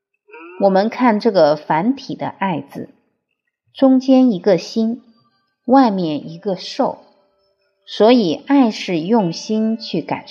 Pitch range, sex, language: 175-280 Hz, female, Chinese